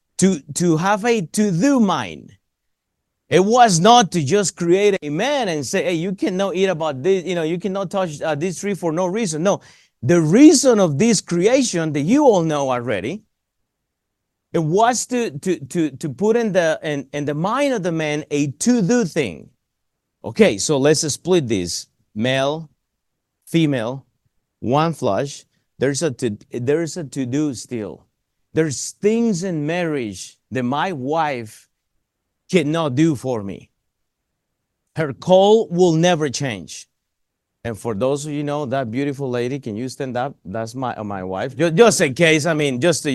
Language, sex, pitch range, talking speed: English, male, 130-185 Hz, 165 wpm